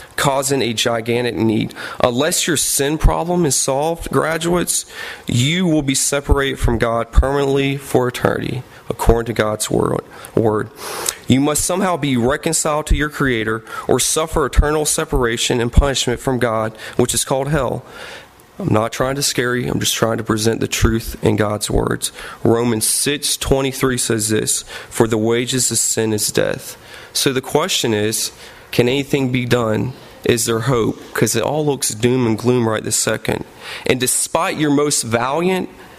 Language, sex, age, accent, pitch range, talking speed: English, male, 30-49, American, 115-150 Hz, 160 wpm